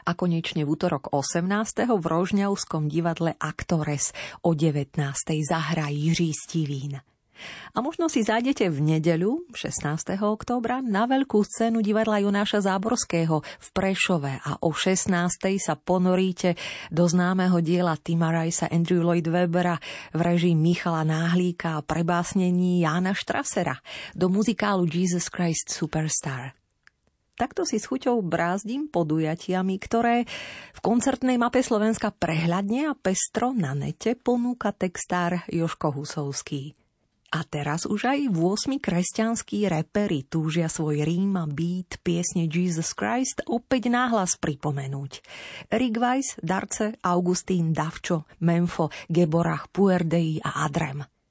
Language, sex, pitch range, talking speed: Slovak, female, 160-210 Hz, 120 wpm